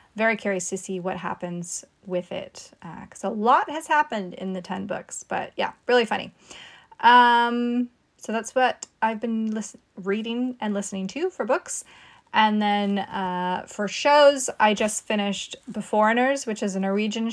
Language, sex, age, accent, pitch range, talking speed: English, female, 20-39, American, 185-225 Hz, 165 wpm